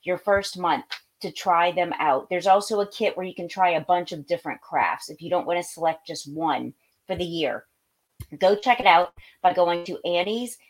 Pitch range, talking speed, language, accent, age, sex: 180-220 Hz, 220 wpm, English, American, 30-49, female